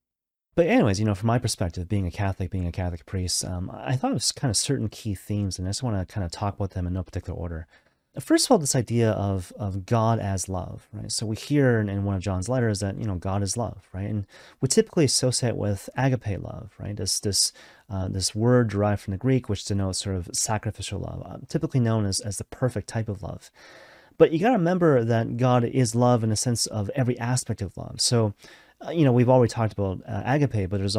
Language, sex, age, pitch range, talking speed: English, male, 30-49, 100-125 Hz, 245 wpm